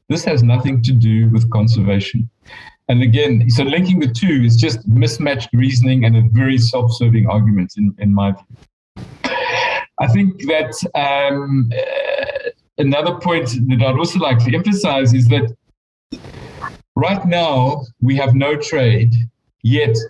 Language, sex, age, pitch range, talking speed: English, male, 50-69, 115-140 Hz, 145 wpm